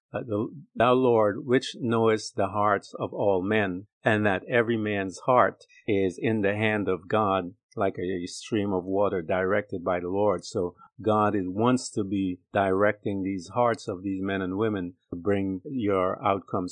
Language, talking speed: English, 180 wpm